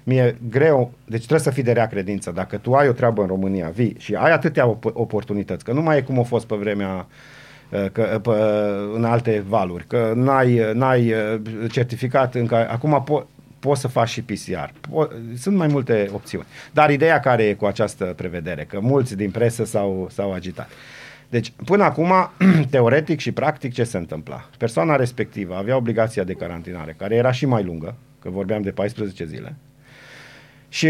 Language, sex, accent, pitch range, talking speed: Romanian, male, native, 110-145 Hz, 175 wpm